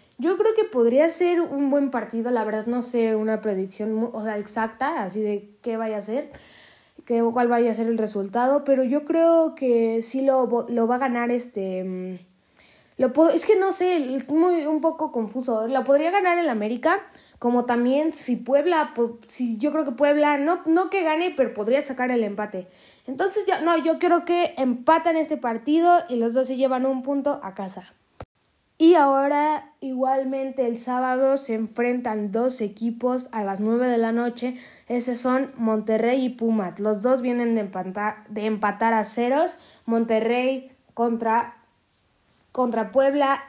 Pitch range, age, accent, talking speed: 230-290 Hz, 20-39, Mexican, 170 wpm